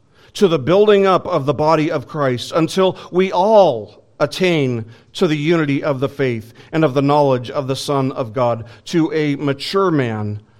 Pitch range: 115-160 Hz